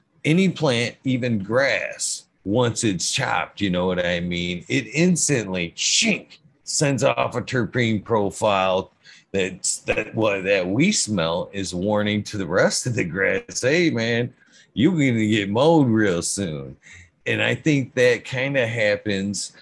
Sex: male